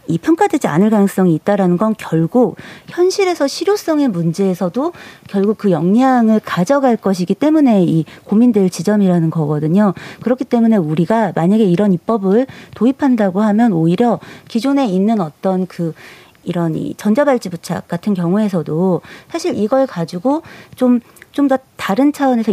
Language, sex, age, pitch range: Korean, female, 40-59, 175-245 Hz